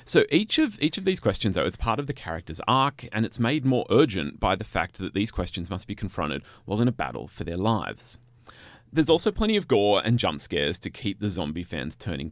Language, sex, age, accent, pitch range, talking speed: English, male, 30-49, Australian, 95-120 Hz, 240 wpm